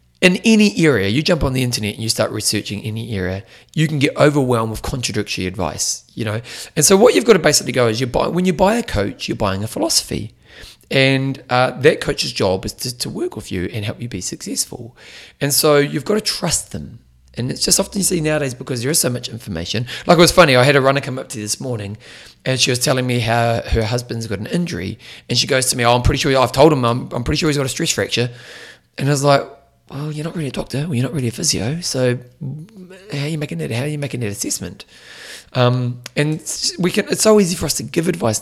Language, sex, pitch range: English, male, 110-150 Hz